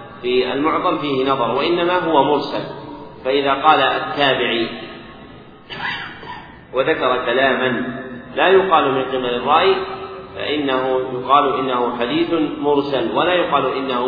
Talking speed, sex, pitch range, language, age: 105 wpm, male, 125-140 Hz, Arabic, 40-59